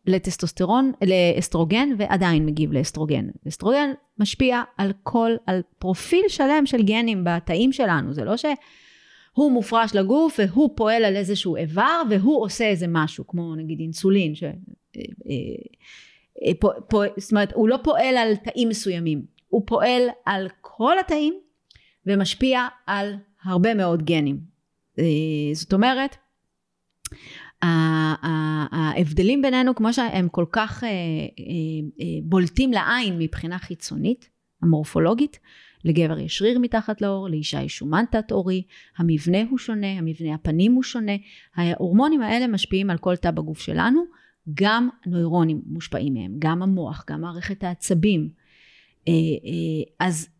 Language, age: Hebrew, 30-49